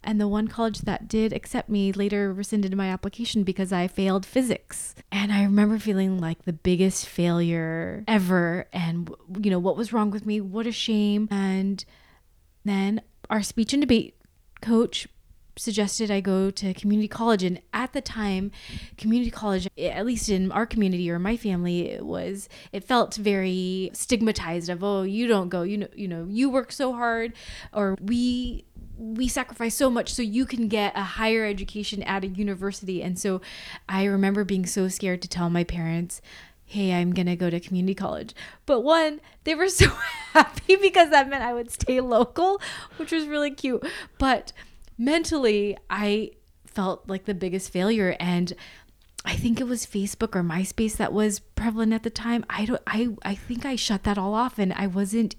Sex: female